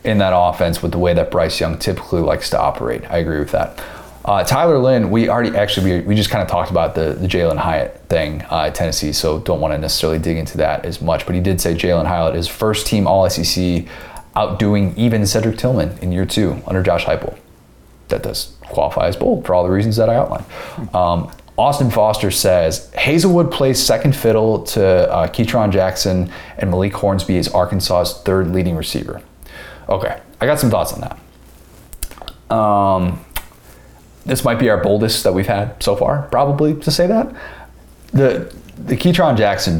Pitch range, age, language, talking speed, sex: 85-105 Hz, 30-49, English, 190 wpm, male